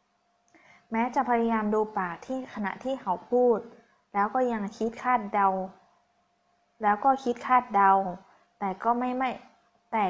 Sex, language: female, Thai